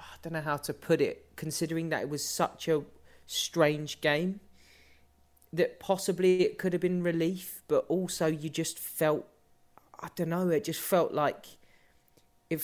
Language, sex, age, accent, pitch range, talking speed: English, male, 30-49, British, 135-165 Hz, 165 wpm